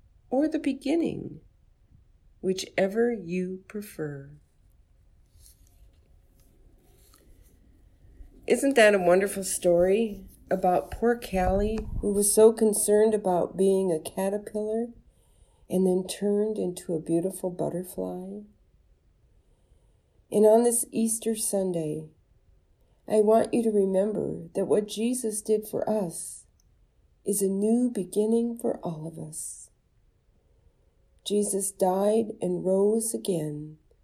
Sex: female